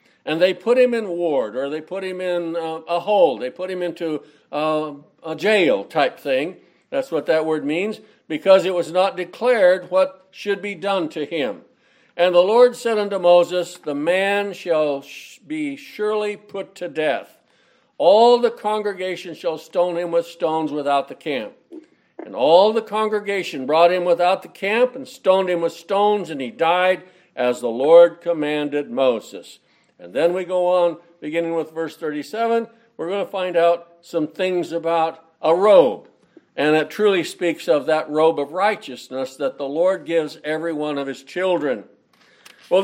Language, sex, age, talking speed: English, male, 60-79, 175 wpm